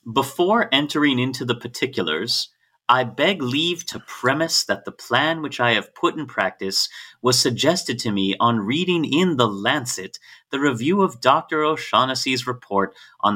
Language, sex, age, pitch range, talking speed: English, male, 30-49, 110-145 Hz, 155 wpm